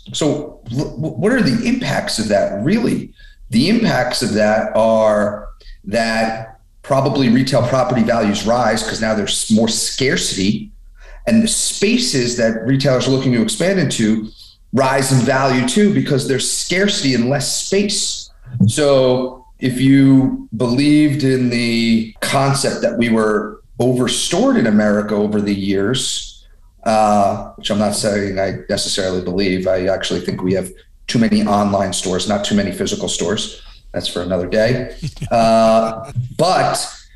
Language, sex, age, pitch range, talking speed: English, male, 40-59, 110-135 Hz, 140 wpm